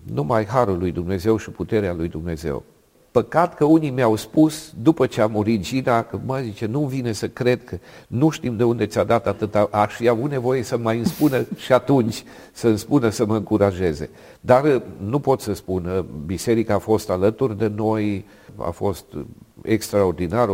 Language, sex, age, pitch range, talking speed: Romanian, male, 50-69, 105-135 Hz, 180 wpm